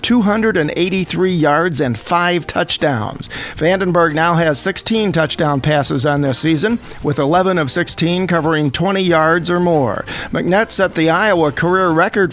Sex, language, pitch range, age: male, English, 155-185 Hz, 50-69